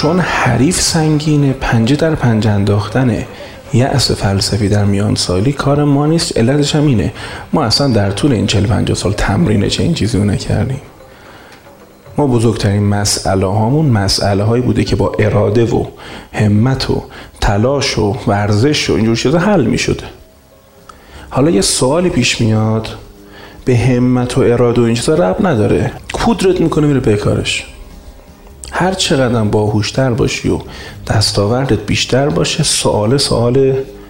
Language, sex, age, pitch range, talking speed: Persian, male, 30-49, 100-135 Hz, 145 wpm